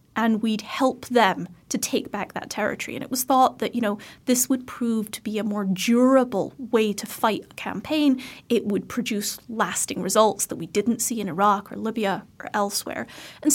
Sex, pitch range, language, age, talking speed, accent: female, 210-255 Hz, English, 30-49, 200 wpm, American